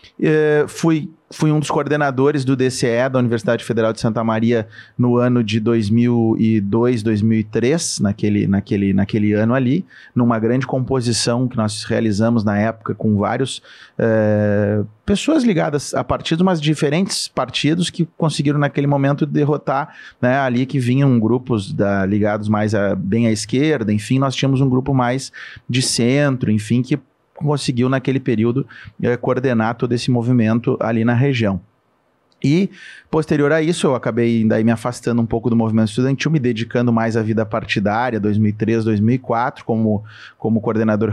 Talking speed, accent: 145 wpm, Brazilian